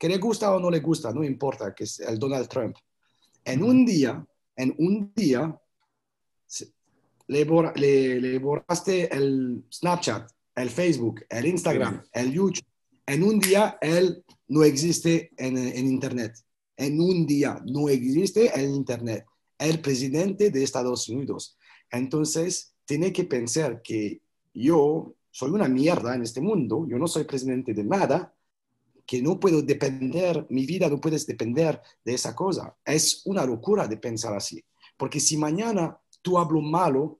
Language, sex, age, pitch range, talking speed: Spanish, male, 40-59, 125-170 Hz, 155 wpm